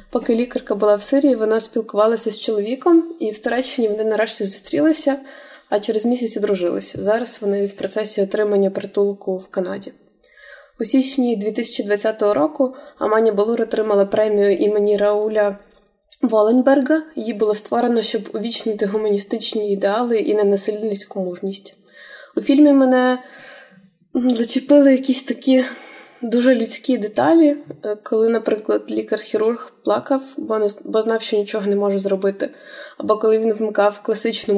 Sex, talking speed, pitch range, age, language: female, 125 wpm, 200-235 Hz, 20-39, Ukrainian